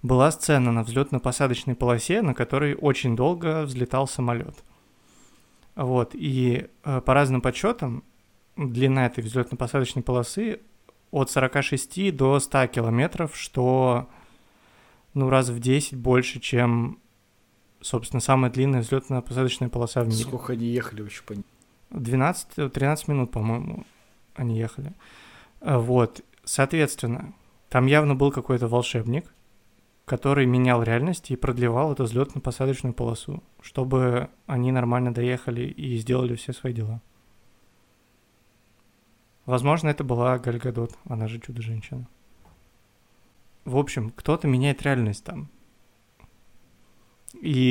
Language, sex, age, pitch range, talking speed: Russian, male, 20-39, 115-135 Hz, 115 wpm